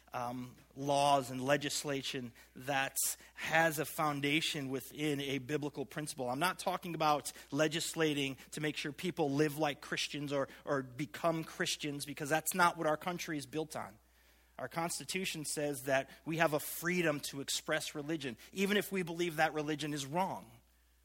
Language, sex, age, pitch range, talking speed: English, male, 30-49, 135-165 Hz, 160 wpm